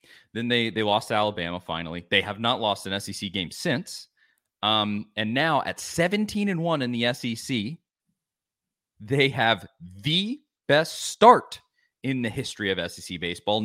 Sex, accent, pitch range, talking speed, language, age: male, American, 105-170 Hz, 160 wpm, English, 30-49